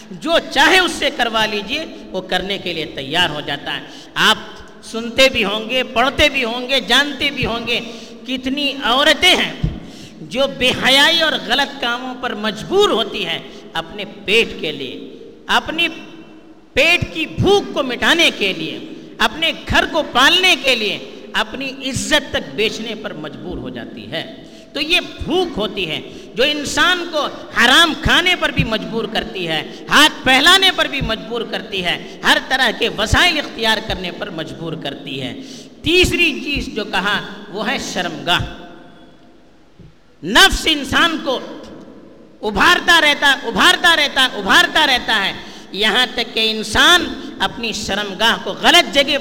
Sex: female